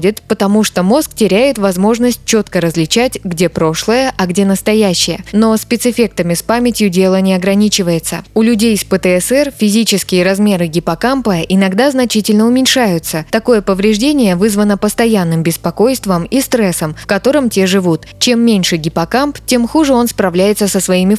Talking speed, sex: 140 wpm, female